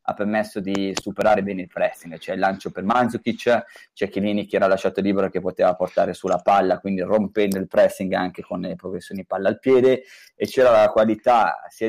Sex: male